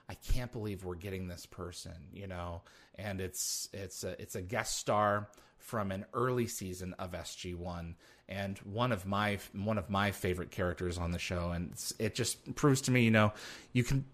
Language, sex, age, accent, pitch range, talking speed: English, male, 30-49, American, 90-110 Hz, 195 wpm